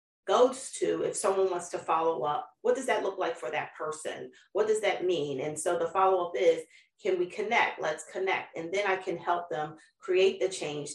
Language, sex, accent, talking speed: English, female, American, 215 wpm